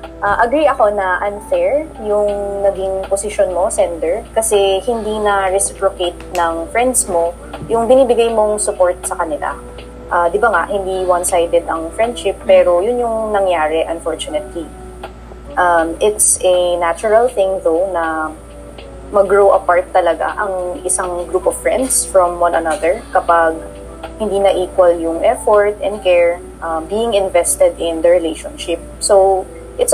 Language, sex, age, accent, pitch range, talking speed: English, female, 20-39, Filipino, 170-210 Hz, 140 wpm